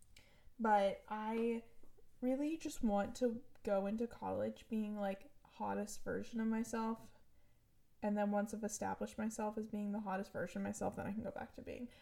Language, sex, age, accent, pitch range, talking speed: English, female, 10-29, American, 200-250 Hz, 175 wpm